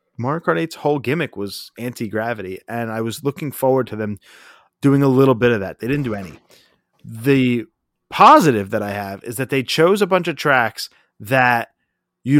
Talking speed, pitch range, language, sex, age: 190 wpm, 110-150 Hz, English, male, 30-49